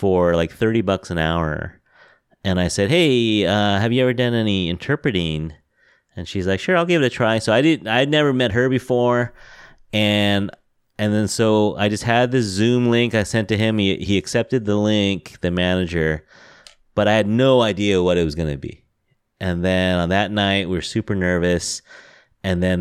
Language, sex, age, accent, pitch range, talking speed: English, male, 30-49, American, 90-120 Hz, 205 wpm